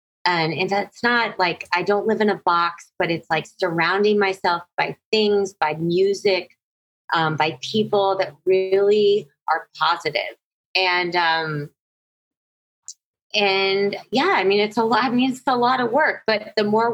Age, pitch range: 20-39, 170-210 Hz